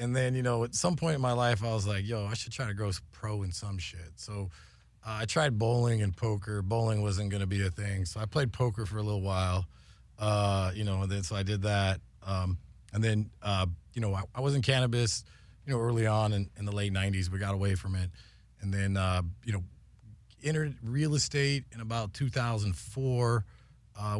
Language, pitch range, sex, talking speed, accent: English, 100-115 Hz, male, 225 wpm, American